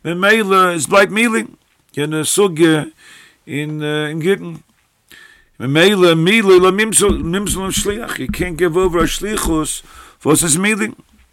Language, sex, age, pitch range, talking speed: English, male, 50-69, 145-185 Hz, 145 wpm